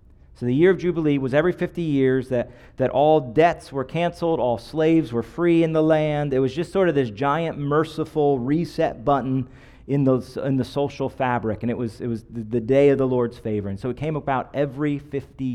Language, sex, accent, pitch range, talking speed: English, male, American, 115-140 Hz, 220 wpm